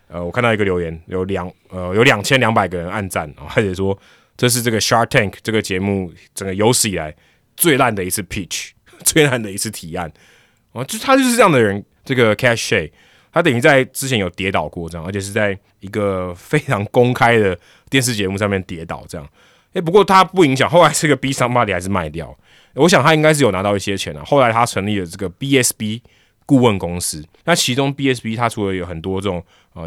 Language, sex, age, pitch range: Chinese, male, 20-39, 95-120 Hz